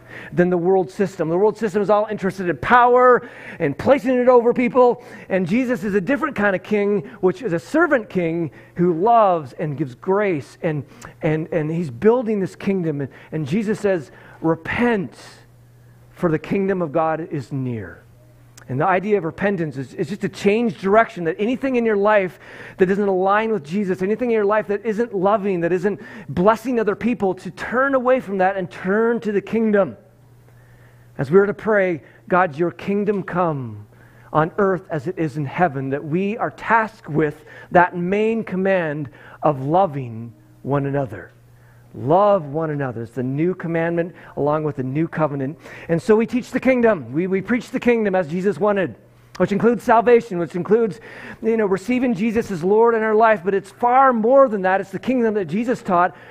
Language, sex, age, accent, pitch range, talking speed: English, male, 40-59, American, 155-215 Hz, 190 wpm